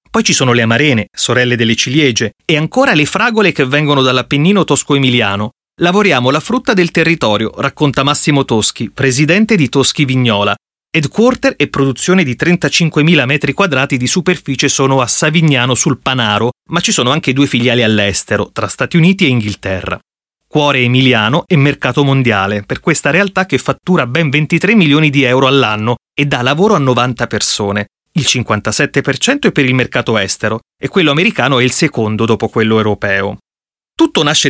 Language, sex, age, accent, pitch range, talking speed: Italian, male, 30-49, native, 120-160 Hz, 165 wpm